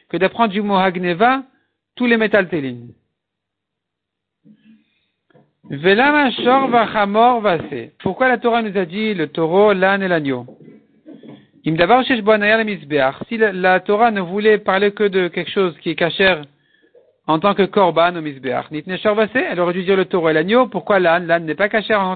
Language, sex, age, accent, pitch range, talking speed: French, male, 50-69, French, 170-230 Hz, 145 wpm